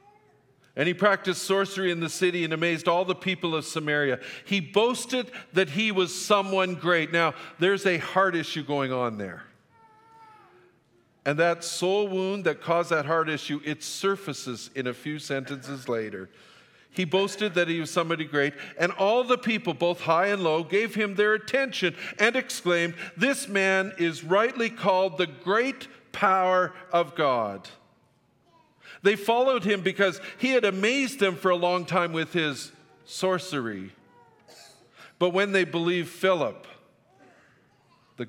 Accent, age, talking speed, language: American, 50-69, 150 wpm, English